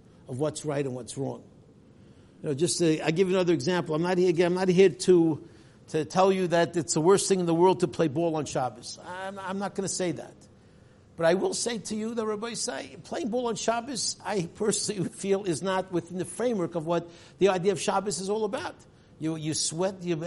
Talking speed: 230 wpm